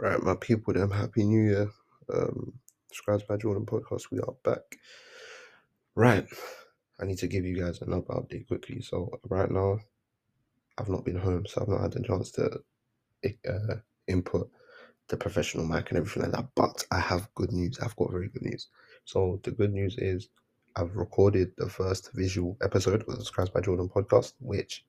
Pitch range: 90-115 Hz